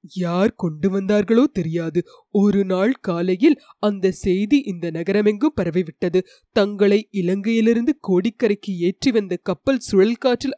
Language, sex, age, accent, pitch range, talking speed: Tamil, female, 20-39, native, 190-245 Hz, 110 wpm